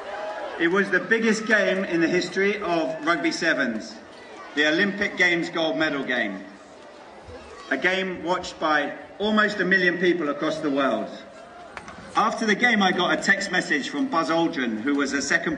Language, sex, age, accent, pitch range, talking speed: English, male, 40-59, British, 150-200 Hz, 165 wpm